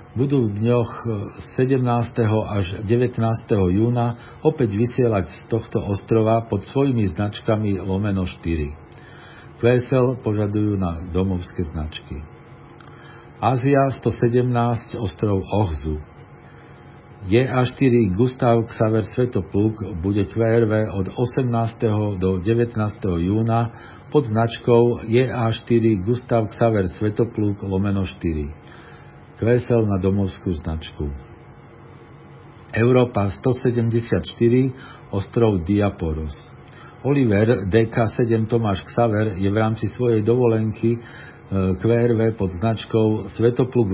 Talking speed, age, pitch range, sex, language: 95 wpm, 50-69, 95-120 Hz, male, Slovak